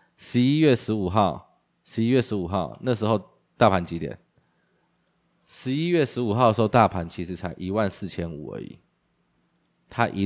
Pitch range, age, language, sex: 90-110 Hz, 20-39, Chinese, male